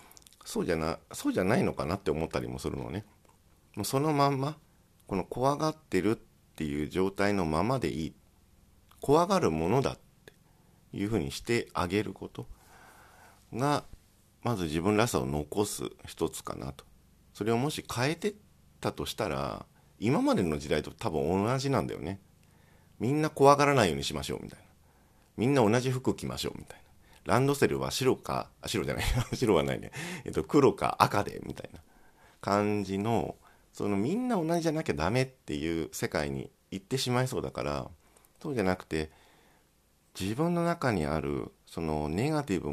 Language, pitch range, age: Japanese, 80-125 Hz, 50-69